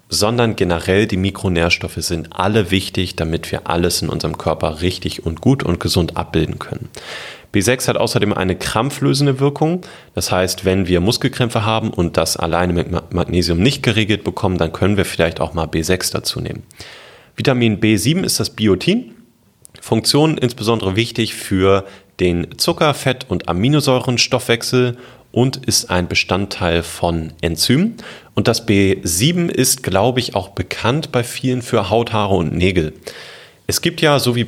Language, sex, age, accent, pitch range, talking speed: German, male, 30-49, German, 90-120 Hz, 155 wpm